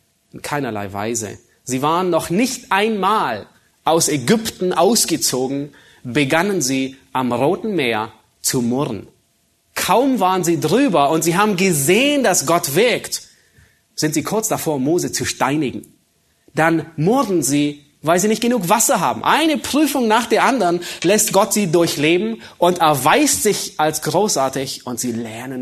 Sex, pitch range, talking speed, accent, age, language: male, 135-190 Hz, 145 wpm, German, 30-49, German